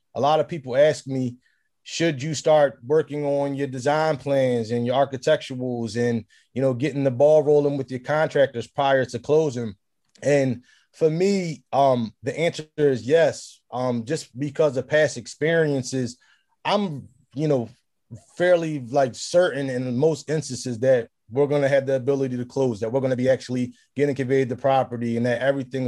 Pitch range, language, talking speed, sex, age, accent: 125-150 Hz, English, 170 wpm, male, 20-39, American